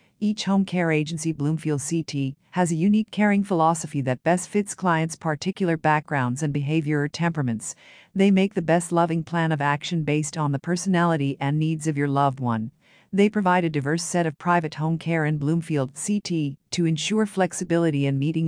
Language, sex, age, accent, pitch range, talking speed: English, female, 50-69, American, 150-180 Hz, 180 wpm